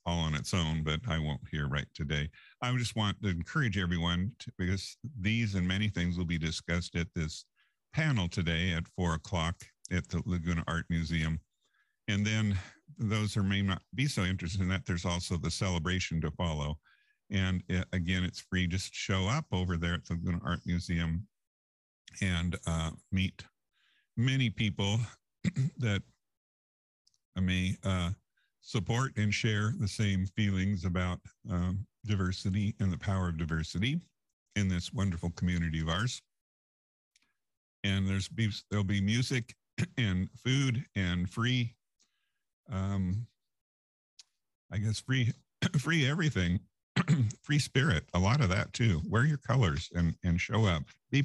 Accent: American